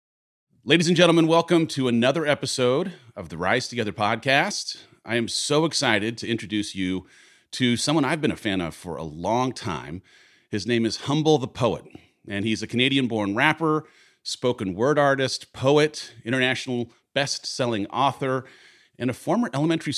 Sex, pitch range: male, 100-140 Hz